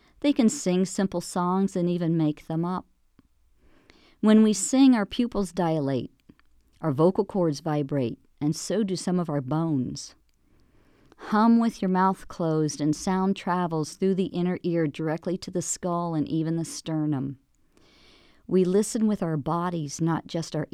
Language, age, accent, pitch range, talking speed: English, 50-69, American, 150-195 Hz, 160 wpm